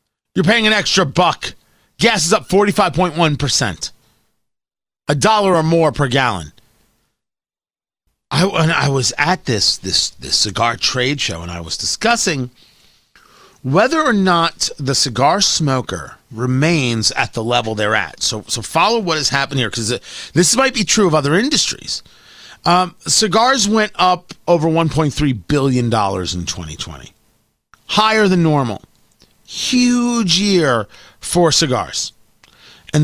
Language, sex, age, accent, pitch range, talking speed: English, male, 40-59, American, 120-185 Hz, 135 wpm